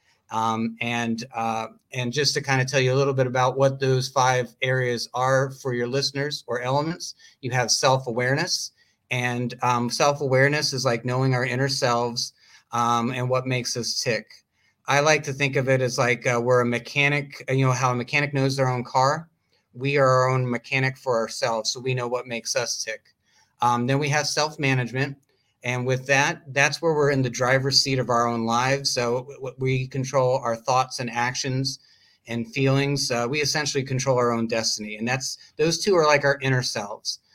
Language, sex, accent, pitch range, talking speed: English, male, American, 120-140 Hz, 195 wpm